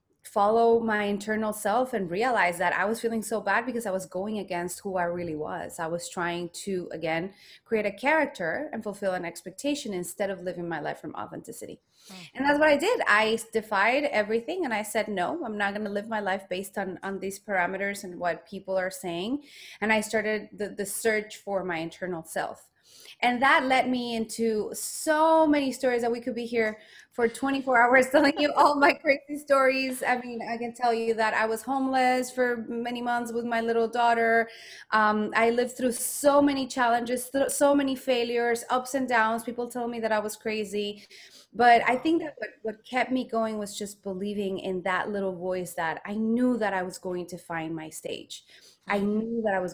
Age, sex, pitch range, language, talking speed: 20-39, female, 195-245 Hz, English, 205 wpm